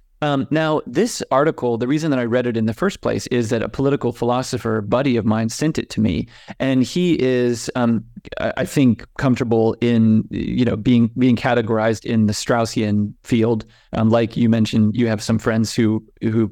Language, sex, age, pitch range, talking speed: English, male, 30-49, 115-140 Hz, 185 wpm